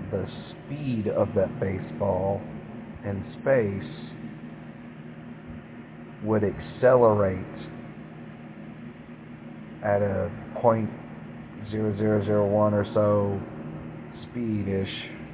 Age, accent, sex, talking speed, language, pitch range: 40-59, American, male, 75 wpm, English, 80-105 Hz